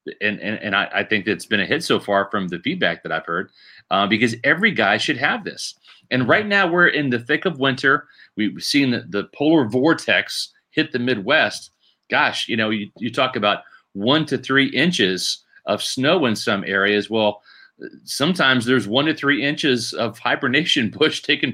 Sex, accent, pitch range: male, American, 115-150 Hz